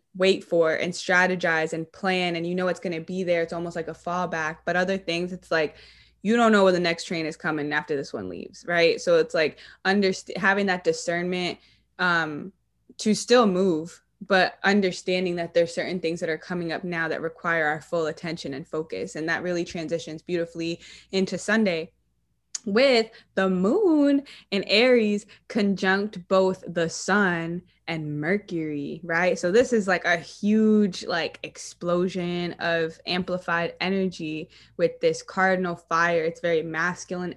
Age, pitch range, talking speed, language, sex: 20-39, 170-195 Hz, 165 wpm, English, female